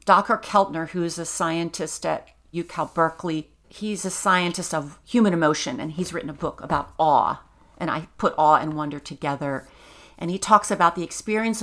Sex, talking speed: female, 180 wpm